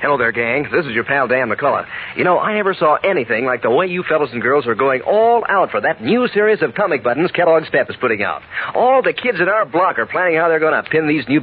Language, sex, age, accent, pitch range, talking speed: English, male, 50-69, American, 135-210 Hz, 280 wpm